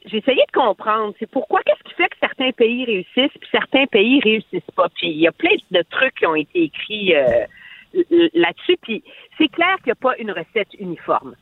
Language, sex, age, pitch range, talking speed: French, female, 50-69, 195-290 Hz, 210 wpm